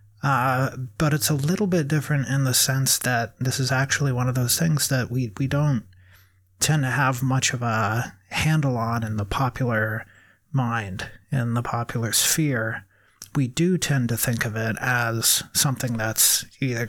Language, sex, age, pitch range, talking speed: English, male, 30-49, 115-140 Hz, 175 wpm